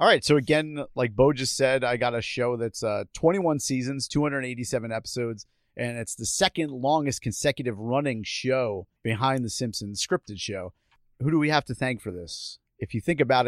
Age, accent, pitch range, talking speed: 40-59, American, 115-140 Hz, 190 wpm